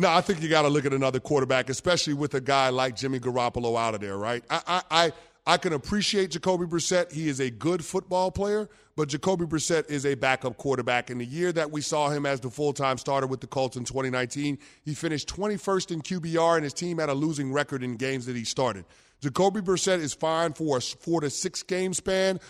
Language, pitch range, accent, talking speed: English, 140-175 Hz, American, 220 wpm